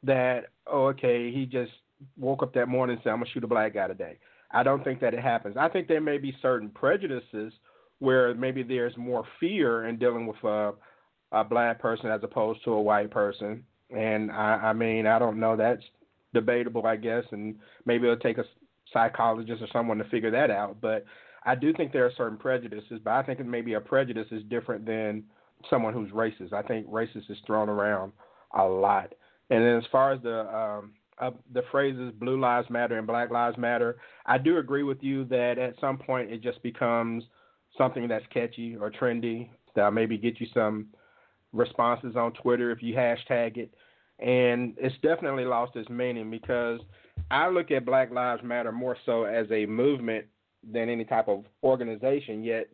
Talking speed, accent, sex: 195 wpm, American, male